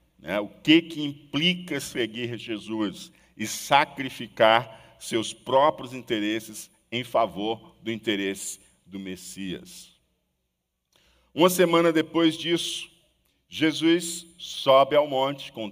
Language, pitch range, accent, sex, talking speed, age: Portuguese, 110-155 Hz, Brazilian, male, 100 wpm, 50-69